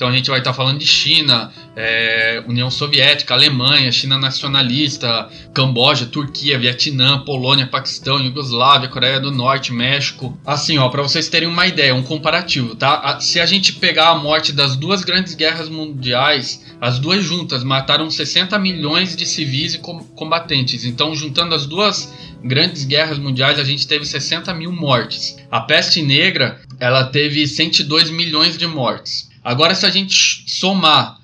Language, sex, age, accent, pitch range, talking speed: Portuguese, male, 20-39, Brazilian, 130-160 Hz, 160 wpm